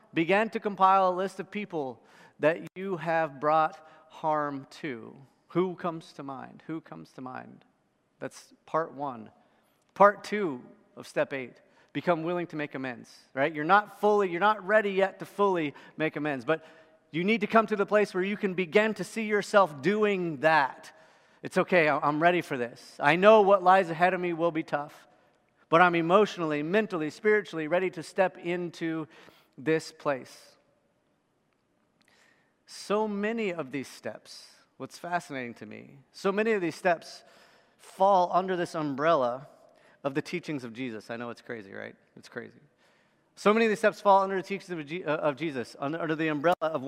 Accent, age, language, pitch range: American, 40-59, English, 155-200 Hz